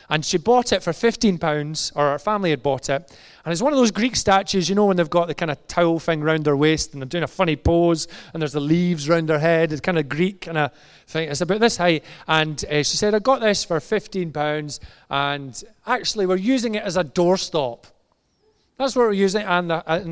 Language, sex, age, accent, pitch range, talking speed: English, male, 30-49, British, 150-195 Hz, 245 wpm